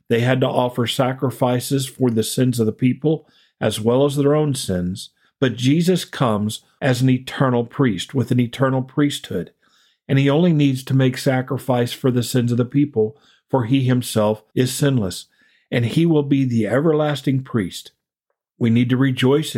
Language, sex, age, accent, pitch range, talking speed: English, male, 50-69, American, 115-140 Hz, 175 wpm